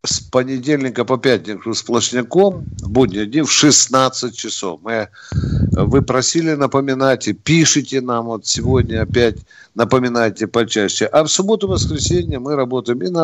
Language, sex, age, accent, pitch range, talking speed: Russian, male, 50-69, native, 115-155 Hz, 125 wpm